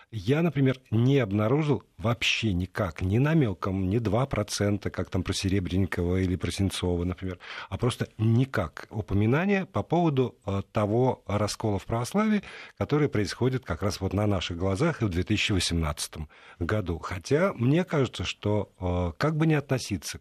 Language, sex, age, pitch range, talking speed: Russian, male, 50-69, 90-115 Hz, 150 wpm